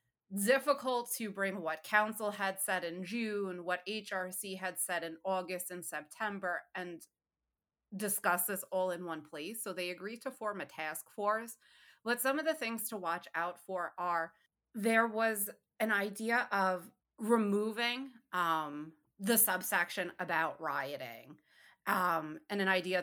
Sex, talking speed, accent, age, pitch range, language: female, 150 wpm, American, 30-49, 170-205 Hz, English